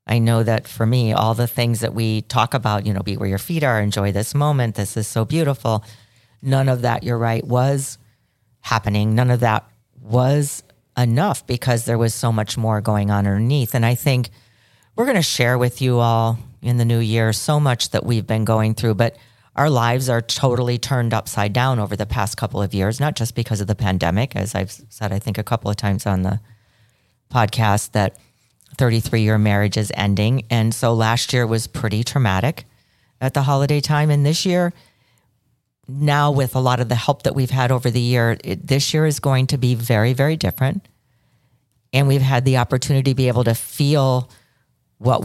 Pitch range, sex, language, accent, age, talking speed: 110-125 Hz, female, English, American, 40-59, 205 wpm